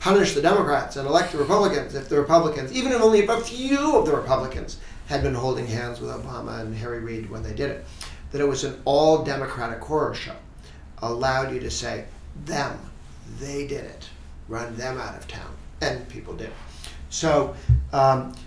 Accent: American